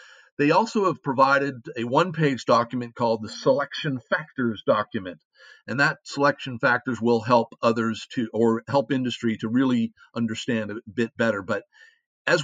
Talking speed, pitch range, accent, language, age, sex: 160 wpm, 125-155 Hz, American, English, 50-69, male